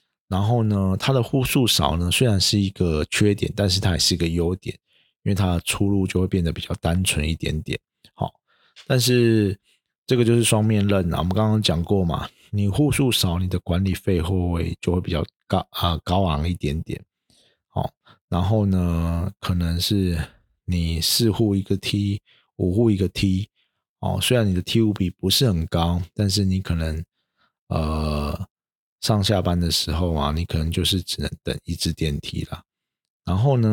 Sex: male